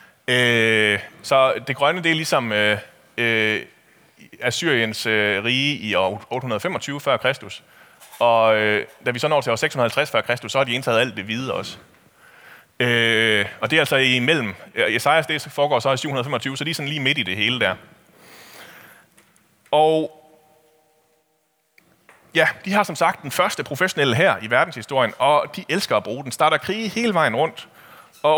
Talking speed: 155 wpm